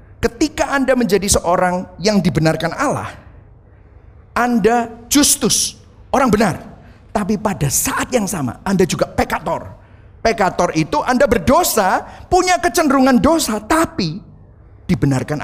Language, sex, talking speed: Indonesian, male, 110 wpm